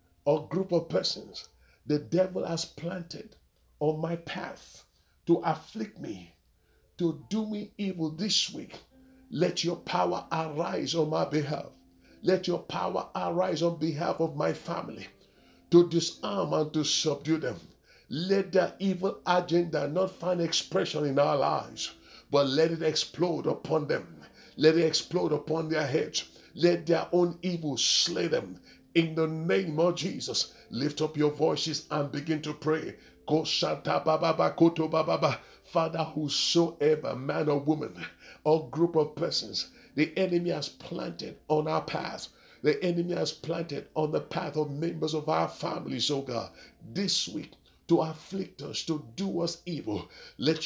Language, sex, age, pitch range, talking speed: English, male, 50-69, 150-175 Hz, 145 wpm